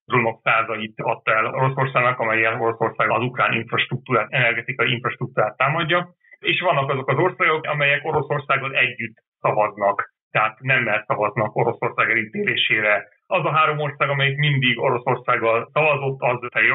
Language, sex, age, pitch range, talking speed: Hungarian, male, 30-49, 115-140 Hz, 135 wpm